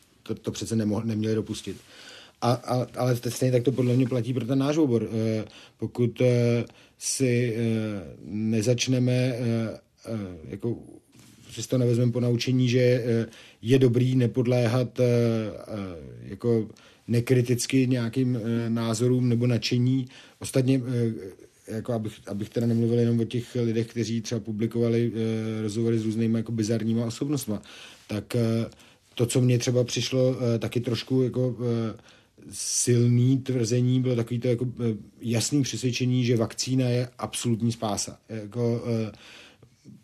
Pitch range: 110-125 Hz